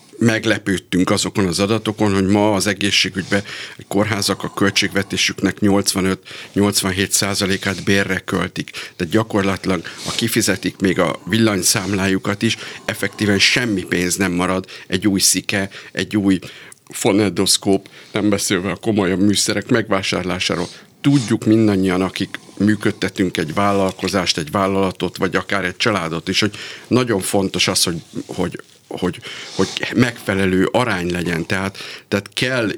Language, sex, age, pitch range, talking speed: Hungarian, male, 50-69, 95-105 Hz, 125 wpm